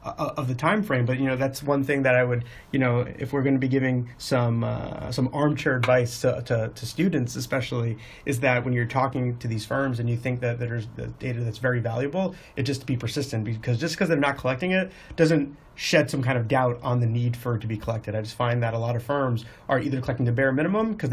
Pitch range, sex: 120-140 Hz, male